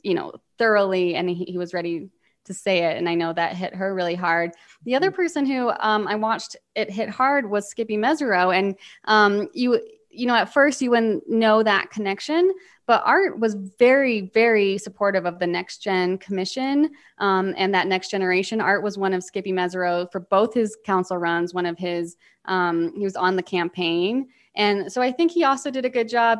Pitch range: 185-225 Hz